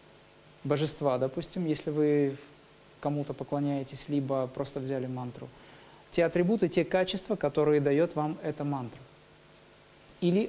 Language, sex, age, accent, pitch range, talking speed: Russian, male, 30-49, native, 140-175 Hz, 115 wpm